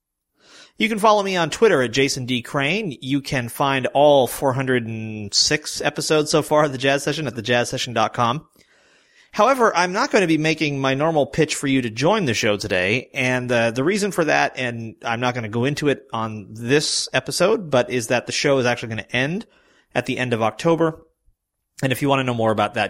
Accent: American